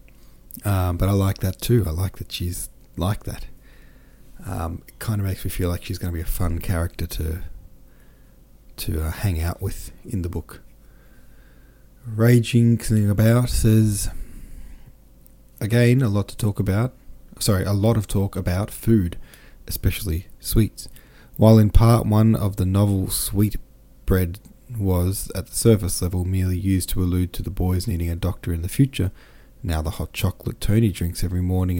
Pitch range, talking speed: 85-110 Hz, 170 wpm